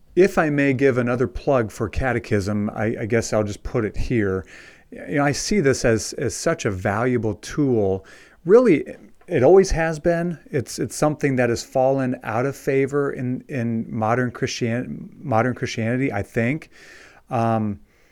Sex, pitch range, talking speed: male, 110-140 Hz, 160 wpm